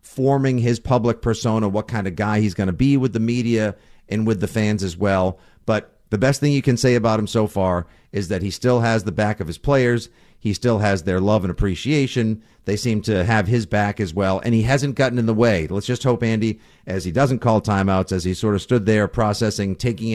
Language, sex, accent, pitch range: English, male, American, 100-120 Hz